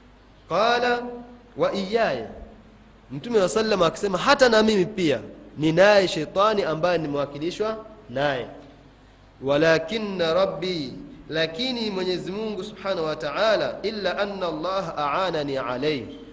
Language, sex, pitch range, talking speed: Swahili, male, 150-220 Hz, 105 wpm